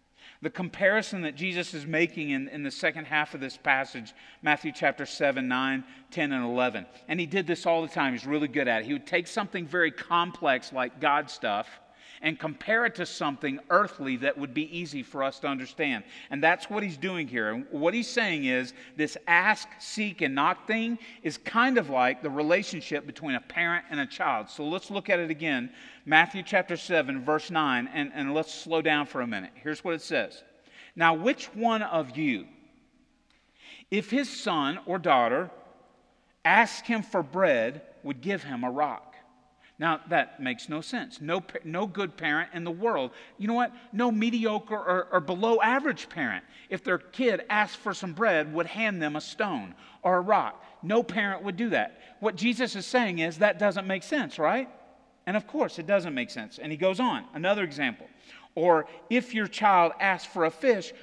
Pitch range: 155-230 Hz